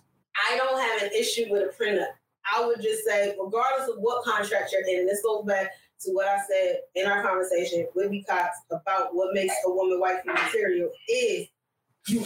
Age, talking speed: 30-49, 200 wpm